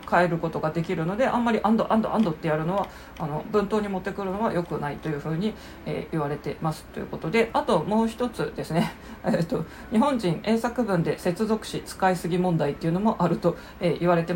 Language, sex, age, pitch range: Japanese, female, 40-59, 165-215 Hz